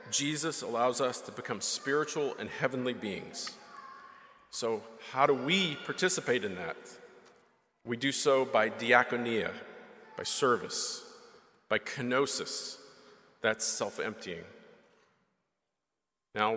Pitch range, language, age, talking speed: 125-165 Hz, English, 40-59, 100 wpm